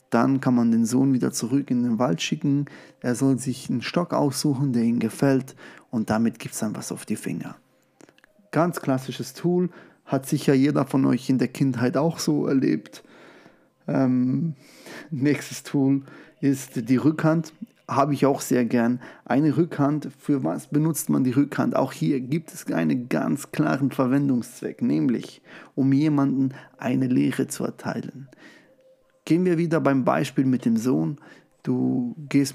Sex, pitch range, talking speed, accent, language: male, 125-150 Hz, 160 wpm, German, German